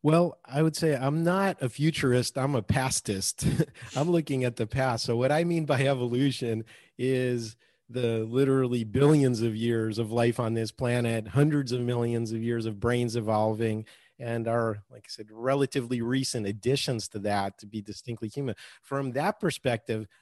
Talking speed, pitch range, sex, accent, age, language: 170 wpm, 115-140 Hz, male, American, 40-59, English